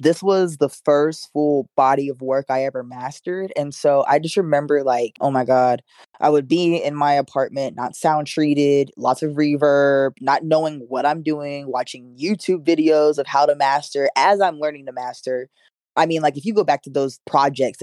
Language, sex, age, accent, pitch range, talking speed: English, female, 20-39, American, 135-160 Hz, 200 wpm